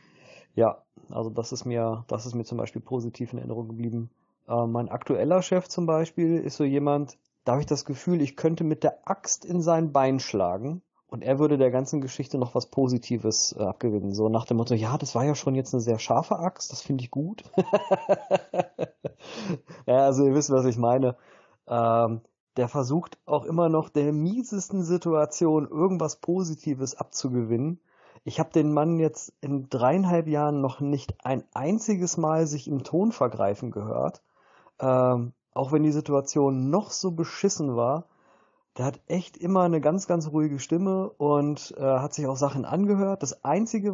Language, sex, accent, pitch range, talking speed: German, male, German, 125-165 Hz, 180 wpm